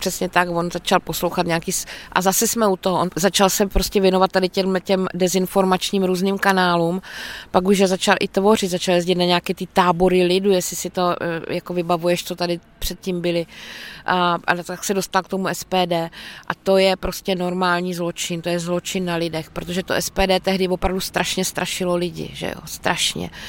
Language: Czech